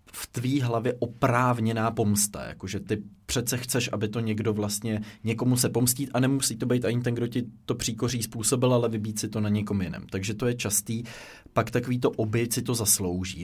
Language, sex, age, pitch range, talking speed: Czech, male, 20-39, 100-115 Hz, 195 wpm